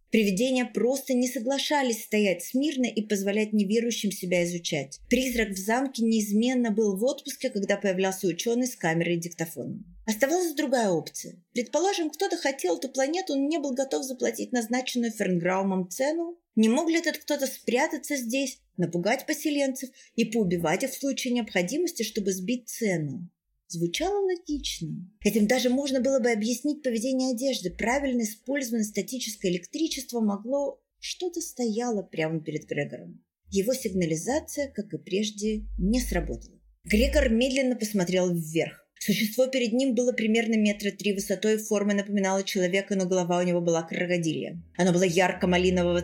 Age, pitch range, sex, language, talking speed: 30-49, 180-260 Hz, female, Russian, 145 wpm